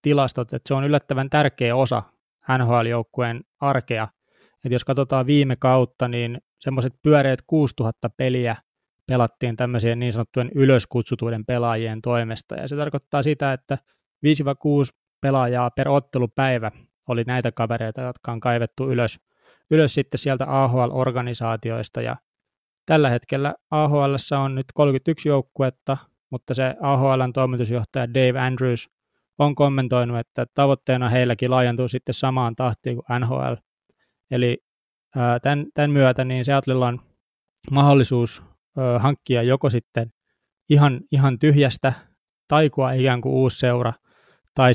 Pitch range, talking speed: 120-140 Hz, 120 wpm